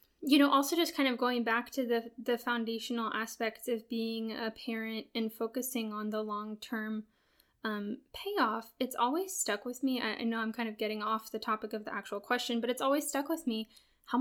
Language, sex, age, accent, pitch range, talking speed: English, female, 10-29, American, 225-265 Hz, 205 wpm